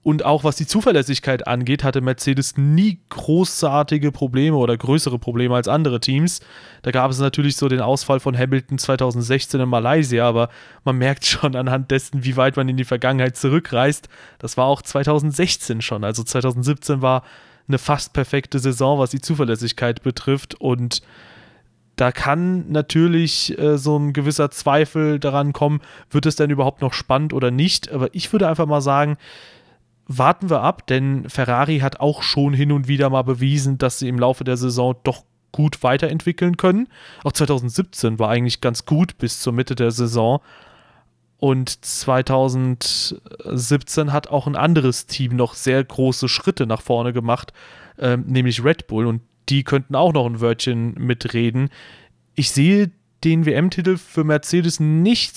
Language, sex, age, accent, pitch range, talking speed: German, male, 30-49, German, 125-150 Hz, 160 wpm